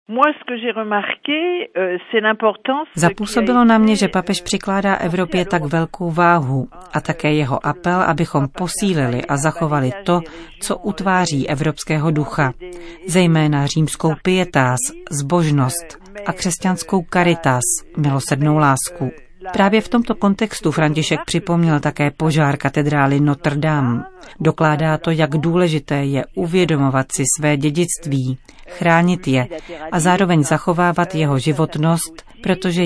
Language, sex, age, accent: Czech, female, 40-59, native